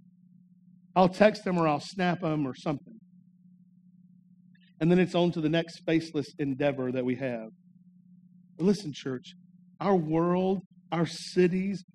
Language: English